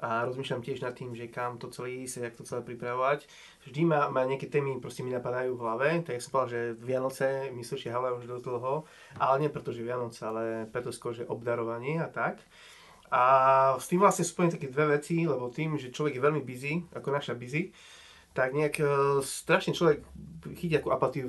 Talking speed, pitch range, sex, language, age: 195 wpm, 125-155 Hz, male, Slovak, 20-39